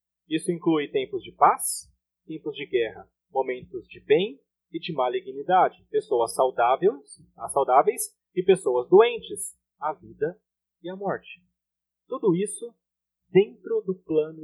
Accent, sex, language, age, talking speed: Brazilian, male, Portuguese, 30-49, 125 wpm